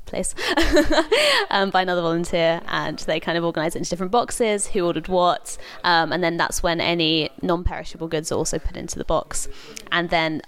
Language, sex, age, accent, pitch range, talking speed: English, female, 20-39, British, 185-260 Hz, 190 wpm